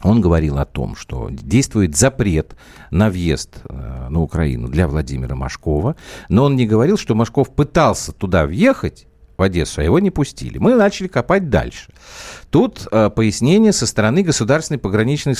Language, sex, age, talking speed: Russian, male, 50-69, 150 wpm